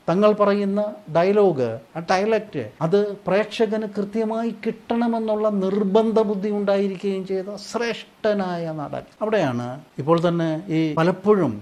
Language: Malayalam